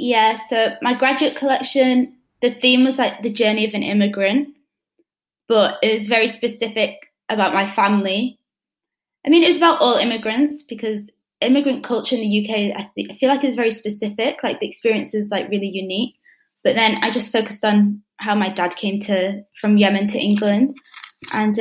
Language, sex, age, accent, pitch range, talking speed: English, female, 20-39, British, 205-245 Hz, 180 wpm